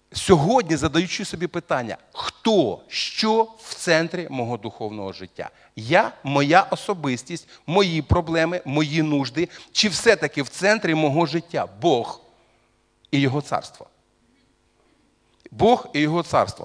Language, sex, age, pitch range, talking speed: Russian, male, 40-59, 125-205 Hz, 115 wpm